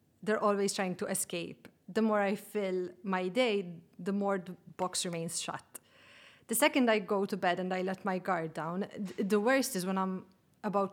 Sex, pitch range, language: female, 185-230 Hz, English